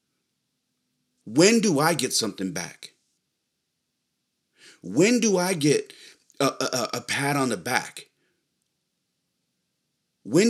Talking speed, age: 105 wpm, 40-59